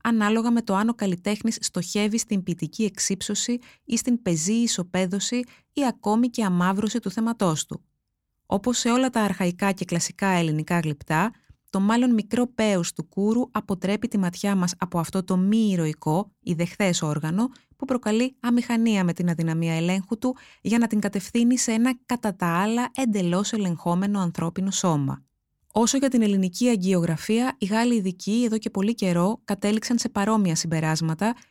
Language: Greek